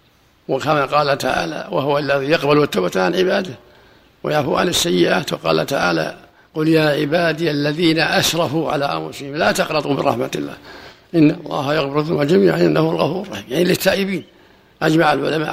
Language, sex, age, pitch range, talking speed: Arabic, male, 60-79, 145-175 Hz, 145 wpm